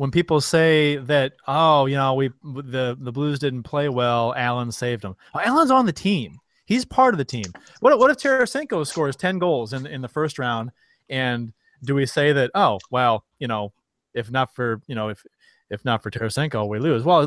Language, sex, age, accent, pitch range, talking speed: English, male, 30-49, American, 125-170 Hz, 210 wpm